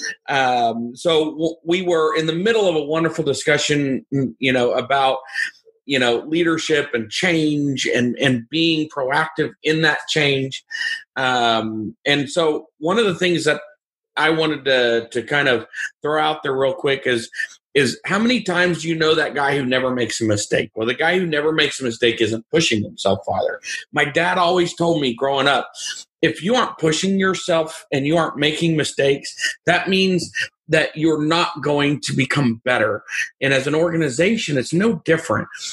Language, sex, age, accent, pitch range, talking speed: English, male, 40-59, American, 135-175 Hz, 175 wpm